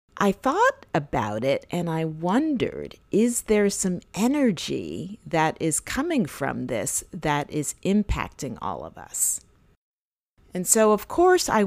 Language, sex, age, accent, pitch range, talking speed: English, female, 40-59, American, 145-210 Hz, 140 wpm